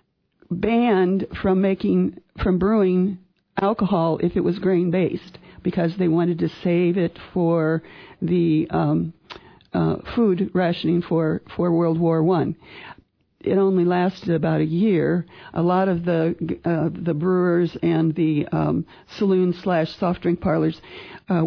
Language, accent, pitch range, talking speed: English, American, 165-190 Hz, 140 wpm